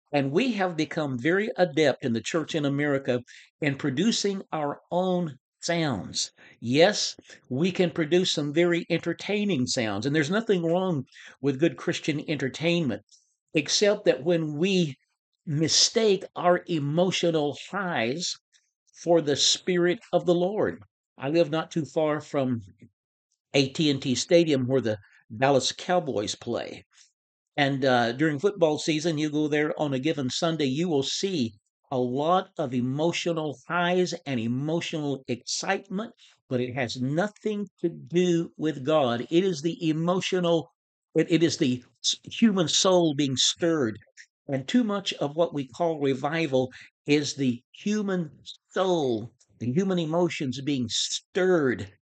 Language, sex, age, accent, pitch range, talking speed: English, male, 60-79, American, 130-175 Hz, 135 wpm